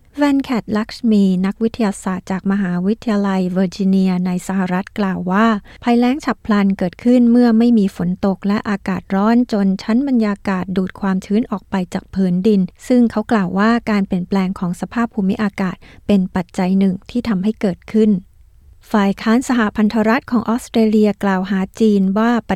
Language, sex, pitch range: Thai, female, 190-220 Hz